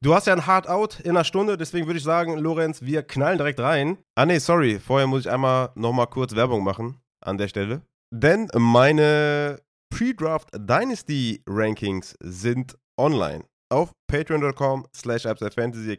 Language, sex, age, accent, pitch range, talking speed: German, male, 20-39, German, 120-155 Hz, 160 wpm